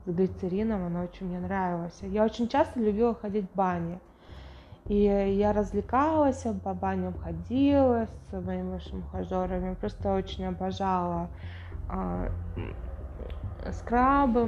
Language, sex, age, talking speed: English, female, 20-39, 110 wpm